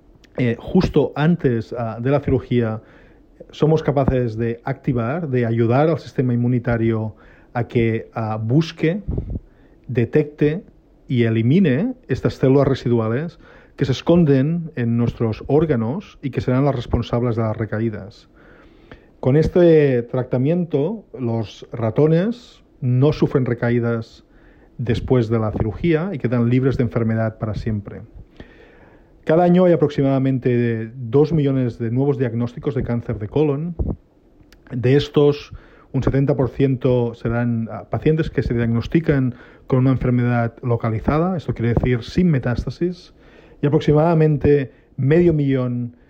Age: 40-59